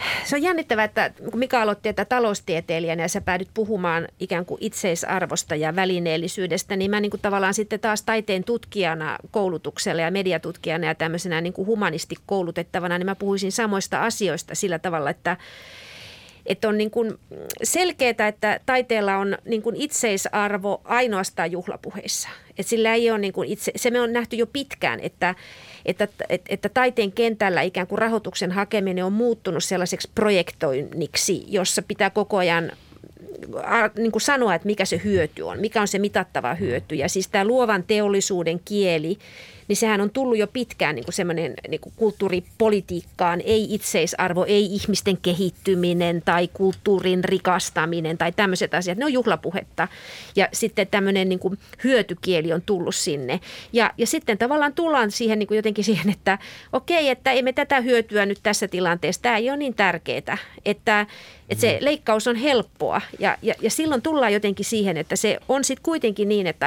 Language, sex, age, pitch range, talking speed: Finnish, female, 30-49, 180-225 Hz, 155 wpm